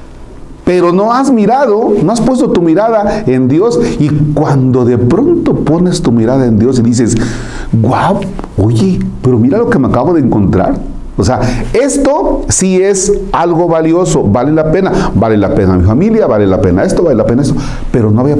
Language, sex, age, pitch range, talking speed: Spanish, male, 40-59, 95-135 Hz, 190 wpm